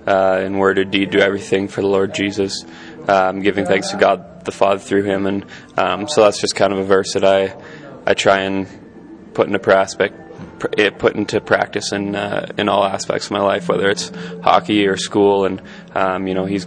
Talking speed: 210 wpm